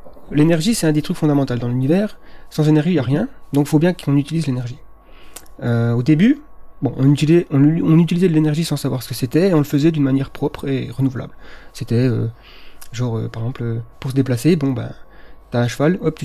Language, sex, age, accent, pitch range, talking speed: French, male, 30-49, French, 125-155 Hz, 210 wpm